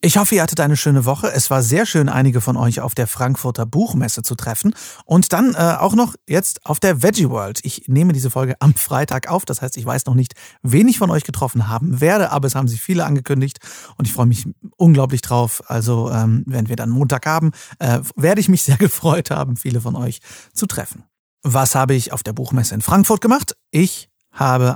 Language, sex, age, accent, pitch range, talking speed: German, male, 40-59, German, 120-170 Hz, 225 wpm